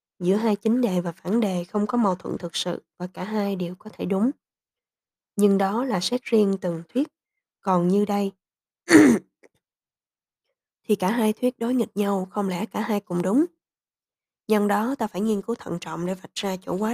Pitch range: 180-225 Hz